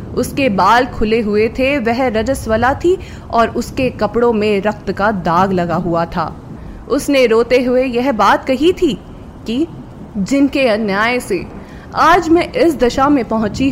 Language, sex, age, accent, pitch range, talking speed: Hindi, female, 20-39, native, 210-275 Hz, 155 wpm